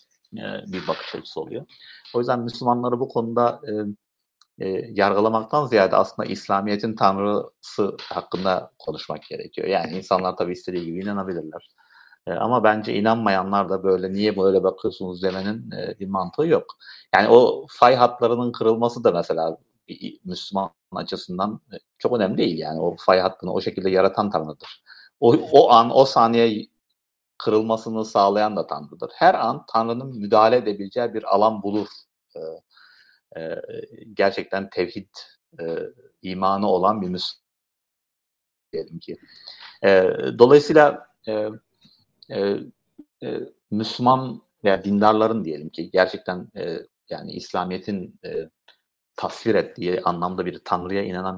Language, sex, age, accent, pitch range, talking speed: Turkish, male, 50-69, native, 95-120 Hz, 125 wpm